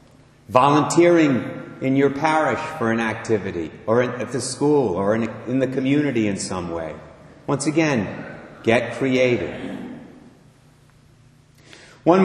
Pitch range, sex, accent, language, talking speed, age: 130-175 Hz, male, American, English, 115 wpm, 50-69